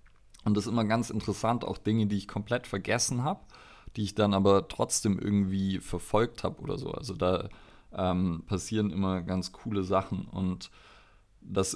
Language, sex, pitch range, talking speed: German, male, 95-110 Hz, 175 wpm